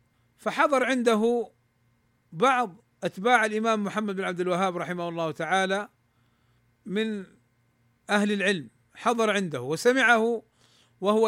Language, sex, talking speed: Arabic, male, 100 wpm